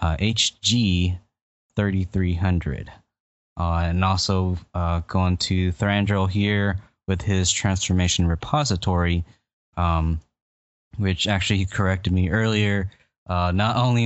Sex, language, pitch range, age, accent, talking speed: male, English, 85-100 Hz, 20-39, American, 100 wpm